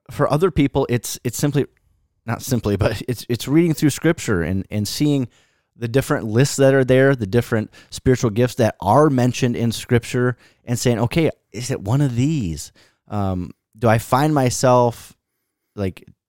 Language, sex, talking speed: English, male, 170 wpm